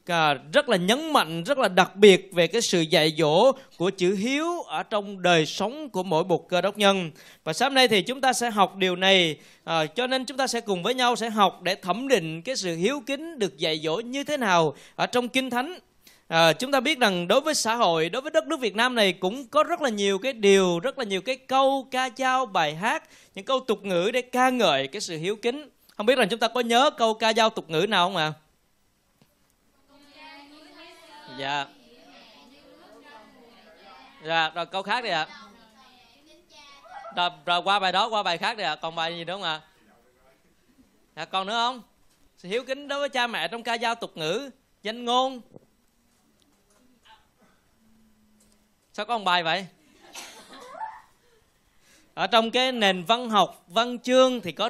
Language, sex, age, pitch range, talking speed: Vietnamese, male, 20-39, 175-255 Hz, 195 wpm